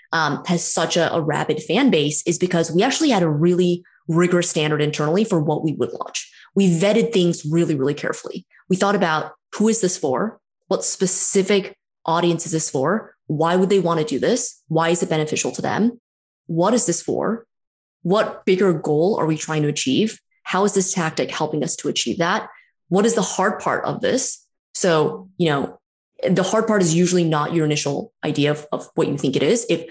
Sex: female